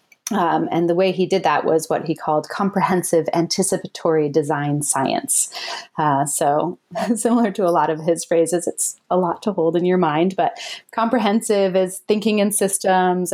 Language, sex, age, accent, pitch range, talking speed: English, female, 30-49, American, 155-190 Hz, 170 wpm